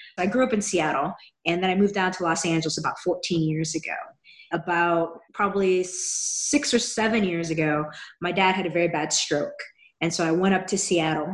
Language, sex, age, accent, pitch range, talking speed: English, female, 20-39, American, 170-250 Hz, 200 wpm